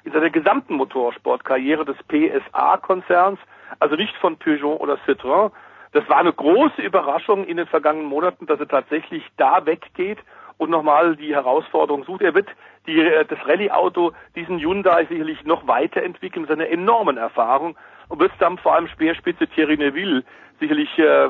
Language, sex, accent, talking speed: German, male, German, 150 wpm